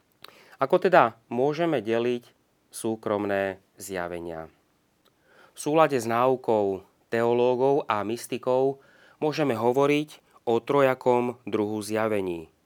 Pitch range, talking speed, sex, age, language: 105-130 Hz, 90 wpm, male, 30-49, Slovak